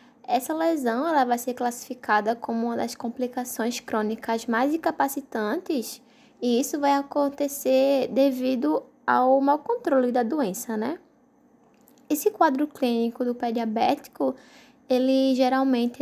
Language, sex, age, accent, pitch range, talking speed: Portuguese, female, 10-29, Brazilian, 250-310 Hz, 120 wpm